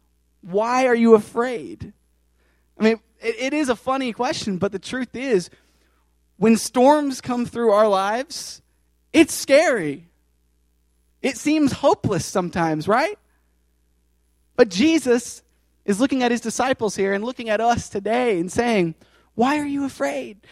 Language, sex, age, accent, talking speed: English, male, 20-39, American, 140 wpm